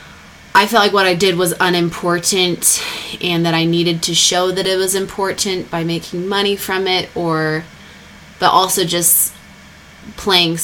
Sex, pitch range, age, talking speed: female, 165-195 Hz, 20-39, 160 wpm